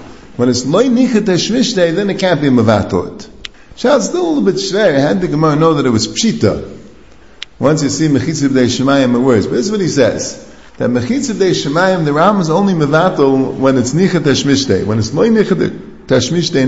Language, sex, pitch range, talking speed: English, male, 140-210 Hz, 200 wpm